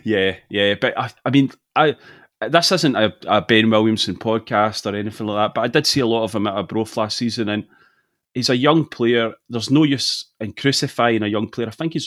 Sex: male